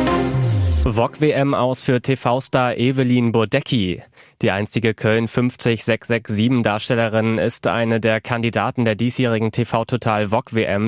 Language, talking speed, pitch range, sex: German, 120 wpm, 110-130 Hz, male